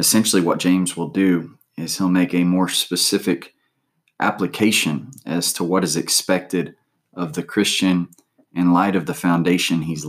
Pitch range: 85-95 Hz